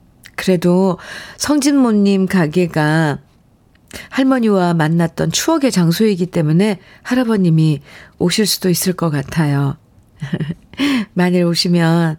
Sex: female